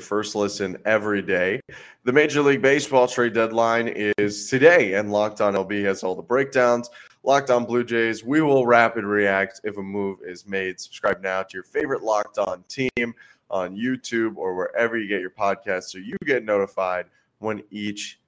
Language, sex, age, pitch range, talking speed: English, male, 20-39, 95-120 Hz, 180 wpm